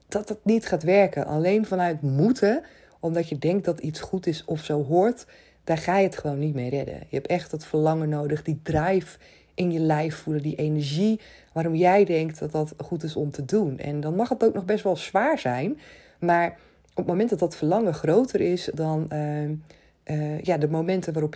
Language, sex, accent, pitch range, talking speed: Dutch, female, Dutch, 145-180 Hz, 210 wpm